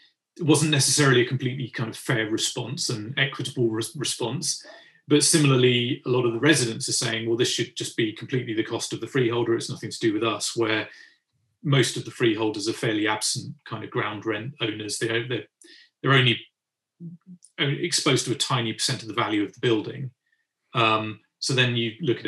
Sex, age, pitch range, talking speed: male, 30-49, 110-140 Hz, 195 wpm